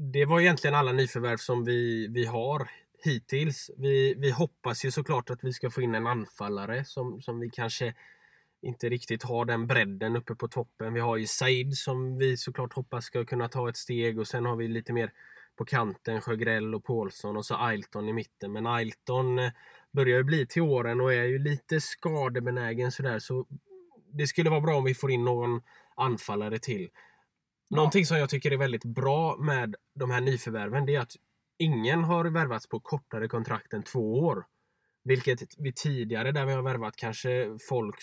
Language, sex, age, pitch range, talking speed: Swedish, male, 10-29, 115-135 Hz, 190 wpm